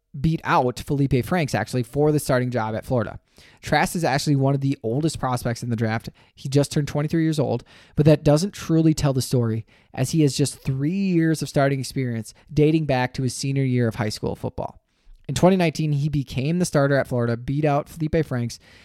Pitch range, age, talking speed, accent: 120-150 Hz, 20-39, 210 wpm, American